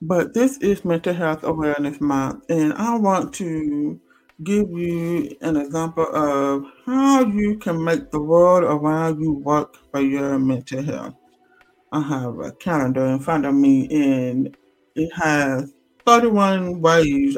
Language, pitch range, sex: English, 145-200 Hz, male